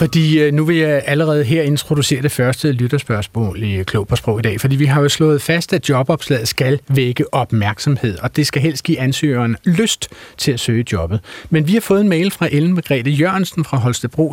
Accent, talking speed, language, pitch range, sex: native, 210 wpm, Danish, 120-155 Hz, male